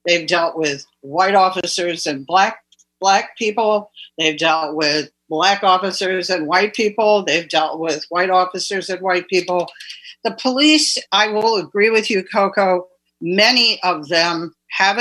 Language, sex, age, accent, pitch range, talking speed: English, female, 60-79, American, 170-210 Hz, 150 wpm